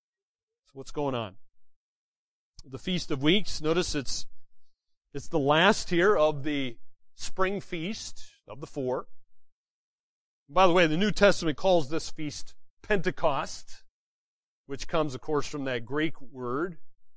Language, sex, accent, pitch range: English, male, American, 135-190 Hz